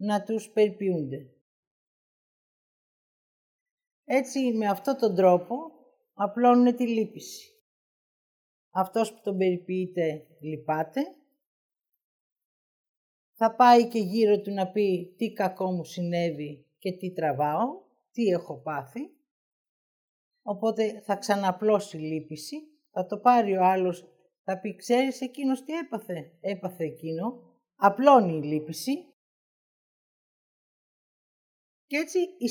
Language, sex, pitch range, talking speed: Greek, female, 180-240 Hz, 105 wpm